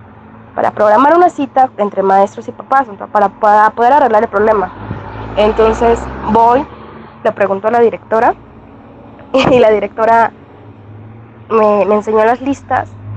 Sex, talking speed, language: female, 130 wpm, Spanish